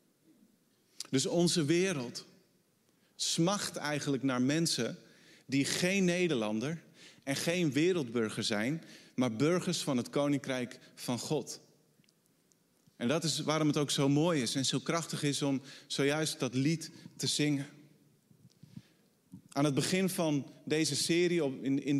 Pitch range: 140-175 Hz